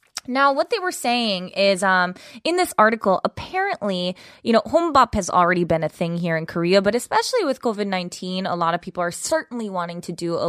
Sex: female